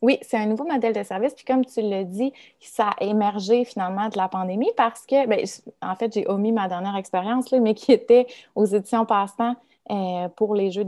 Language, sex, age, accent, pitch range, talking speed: French, female, 20-39, Canadian, 195-240 Hz, 215 wpm